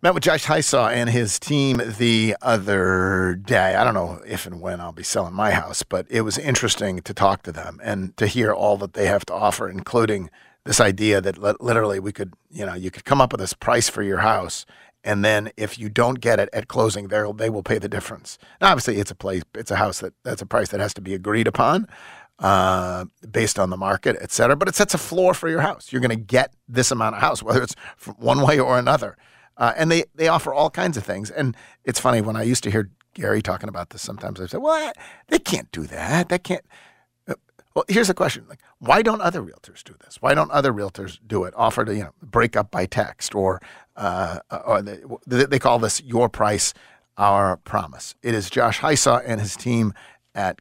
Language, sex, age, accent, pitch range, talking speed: English, male, 40-59, American, 100-125 Hz, 230 wpm